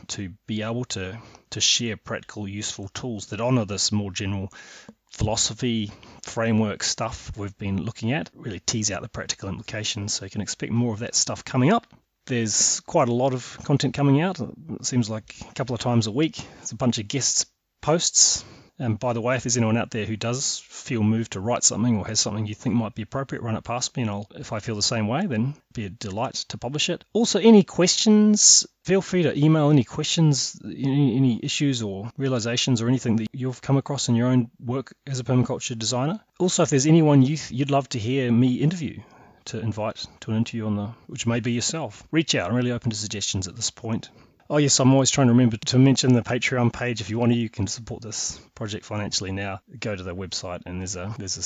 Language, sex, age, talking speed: English, male, 30-49, 230 wpm